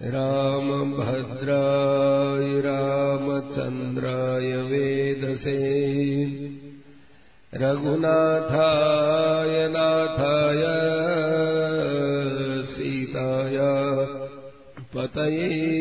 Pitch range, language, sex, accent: 135-145 Hz, Hindi, male, native